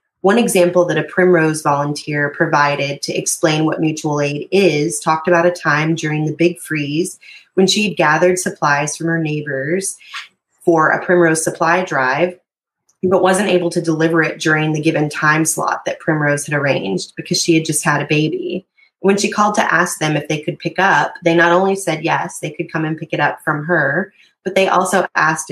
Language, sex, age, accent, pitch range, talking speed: English, female, 20-39, American, 150-180 Hz, 200 wpm